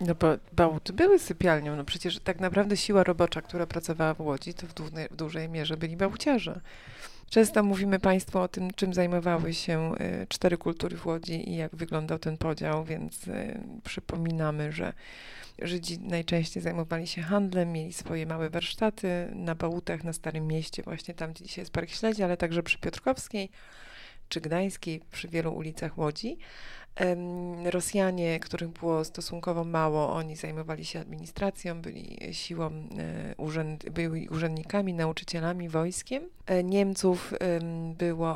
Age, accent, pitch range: 30-49, native, 160-180 Hz